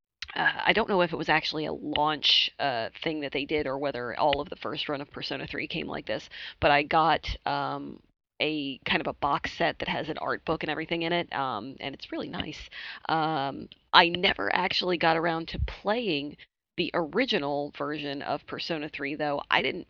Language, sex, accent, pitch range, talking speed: English, female, American, 140-170 Hz, 210 wpm